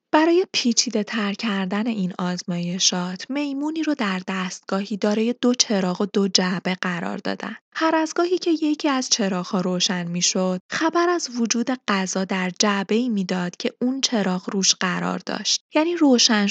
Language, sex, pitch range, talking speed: Persian, female, 190-245 Hz, 160 wpm